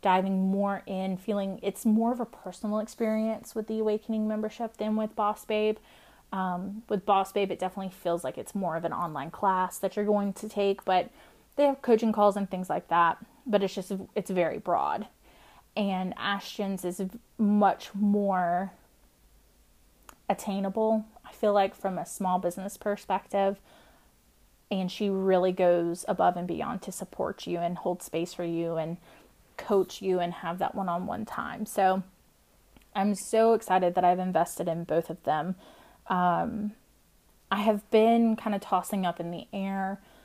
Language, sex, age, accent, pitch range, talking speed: English, female, 30-49, American, 180-215 Hz, 165 wpm